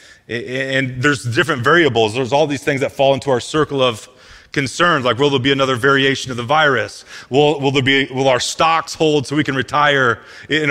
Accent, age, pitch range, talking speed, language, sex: American, 30-49, 130-170 Hz, 205 wpm, English, male